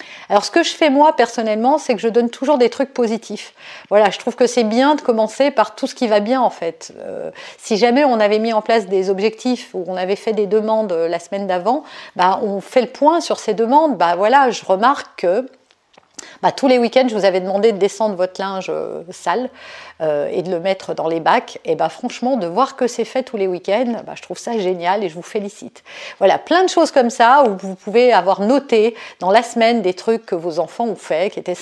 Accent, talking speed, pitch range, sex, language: French, 240 wpm, 195-260 Hz, female, French